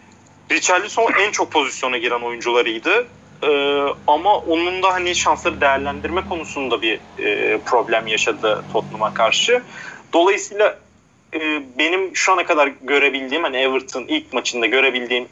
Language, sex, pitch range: Turkish, male, 135-190 Hz